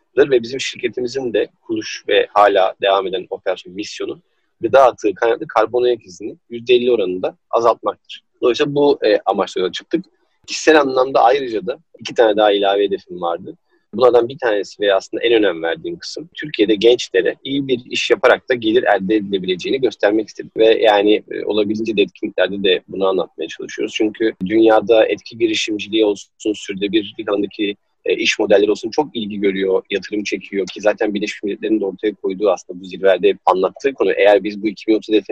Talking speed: 165 wpm